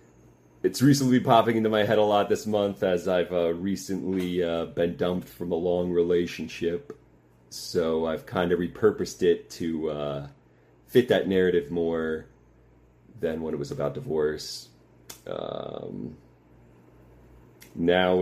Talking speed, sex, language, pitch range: 135 wpm, male, English, 75-95 Hz